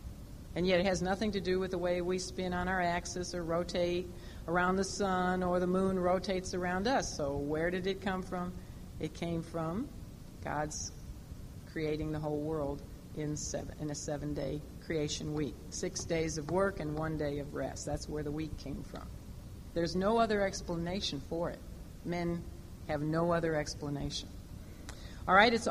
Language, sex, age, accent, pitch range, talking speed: English, female, 50-69, American, 170-215 Hz, 175 wpm